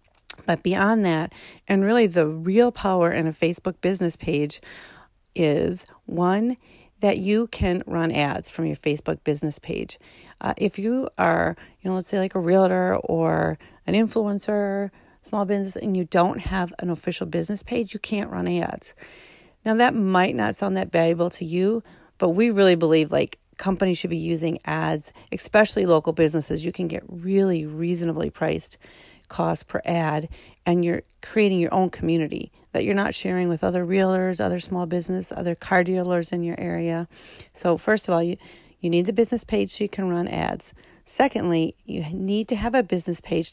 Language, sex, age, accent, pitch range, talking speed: English, female, 40-59, American, 165-195 Hz, 180 wpm